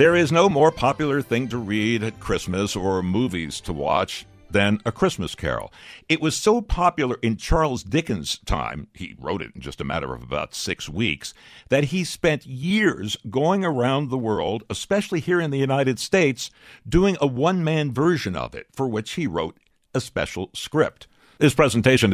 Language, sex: English, male